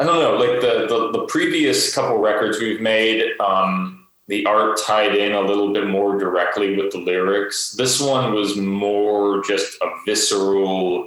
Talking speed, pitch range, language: 175 wpm, 95-120 Hz, Portuguese